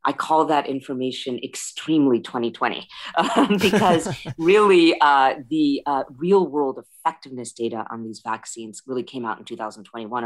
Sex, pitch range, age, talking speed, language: female, 115-135 Hz, 40-59, 140 wpm, English